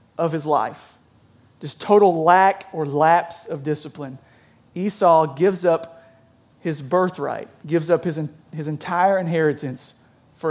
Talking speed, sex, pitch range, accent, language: 125 wpm, male, 130-175 Hz, American, English